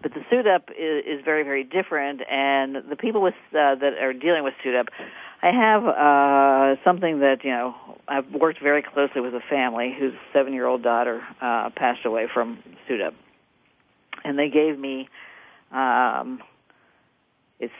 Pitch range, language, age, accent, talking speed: 125-145 Hz, English, 50-69, American, 150 wpm